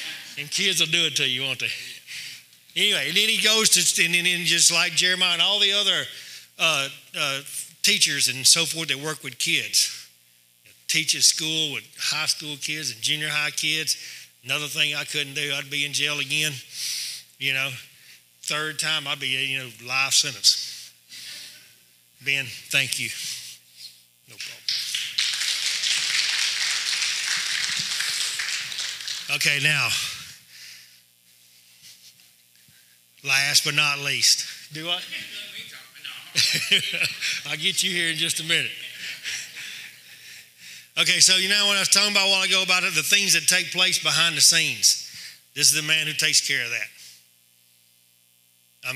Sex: male